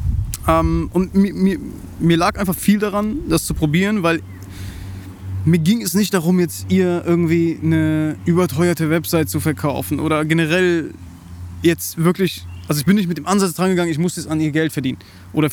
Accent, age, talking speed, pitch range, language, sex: German, 20-39, 170 wpm, 140-175 Hz, German, male